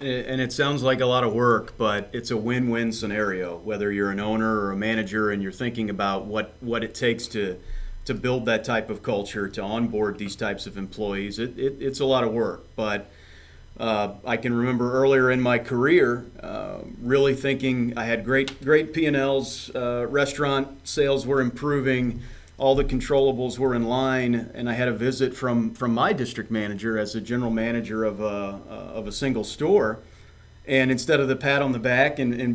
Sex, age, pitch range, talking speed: male, 40-59, 110-130 Hz, 200 wpm